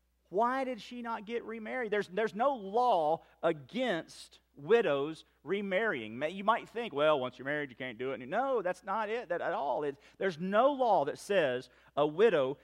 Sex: male